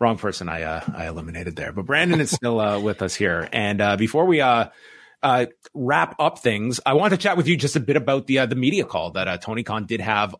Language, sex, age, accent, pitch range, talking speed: English, male, 30-49, American, 105-135 Hz, 260 wpm